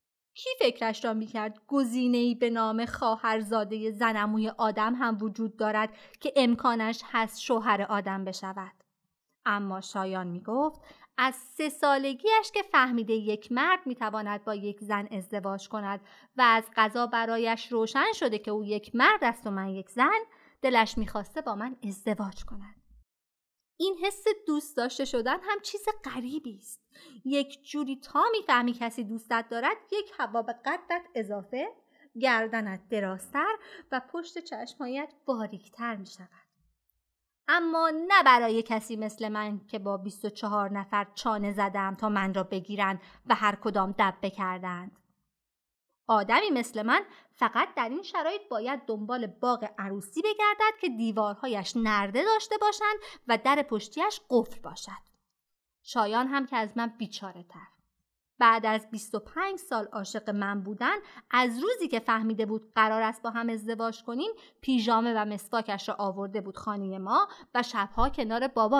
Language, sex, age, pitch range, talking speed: Persian, female, 30-49, 210-270 Hz, 145 wpm